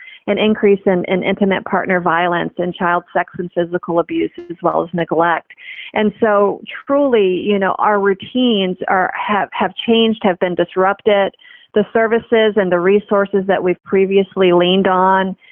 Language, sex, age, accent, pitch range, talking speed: English, female, 40-59, American, 180-205 Hz, 160 wpm